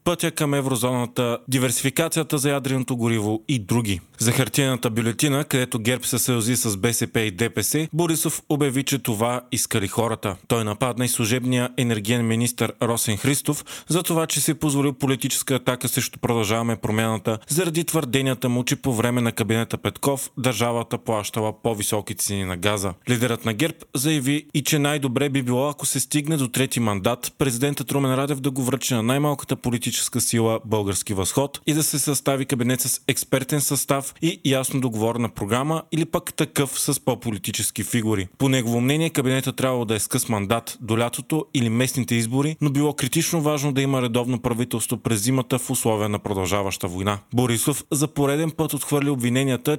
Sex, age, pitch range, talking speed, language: male, 30-49, 115-140 Hz, 165 wpm, Bulgarian